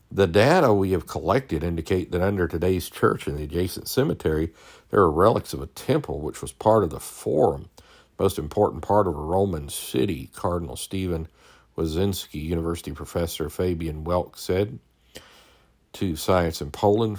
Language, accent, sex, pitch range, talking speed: English, American, male, 80-100 Hz, 155 wpm